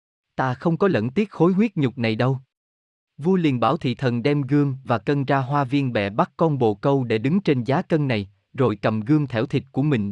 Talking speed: 235 wpm